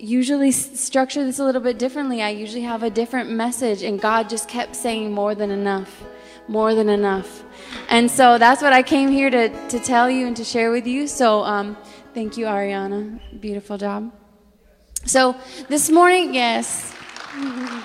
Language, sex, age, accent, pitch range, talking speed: English, female, 20-39, American, 205-255 Hz, 170 wpm